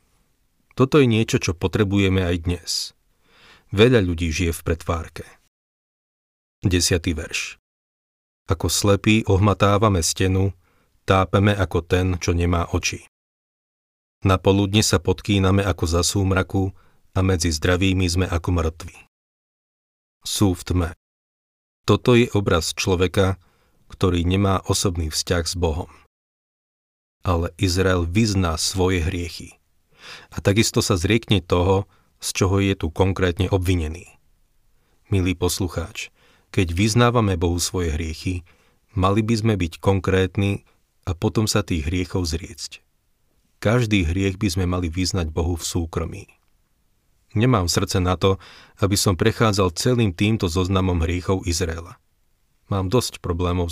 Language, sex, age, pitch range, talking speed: Slovak, male, 40-59, 85-100 Hz, 120 wpm